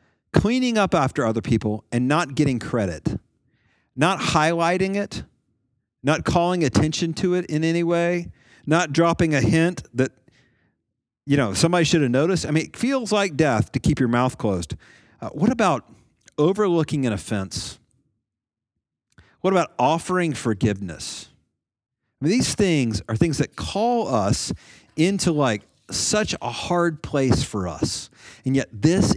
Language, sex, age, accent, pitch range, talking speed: English, male, 40-59, American, 110-155 Hz, 145 wpm